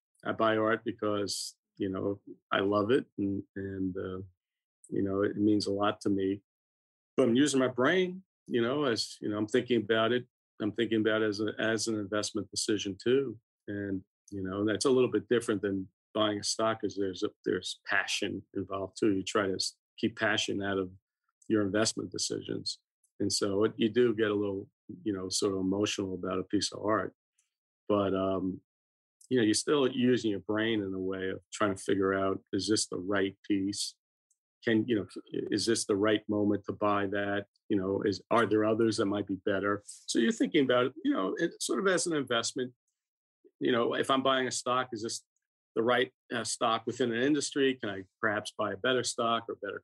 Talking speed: 210 wpm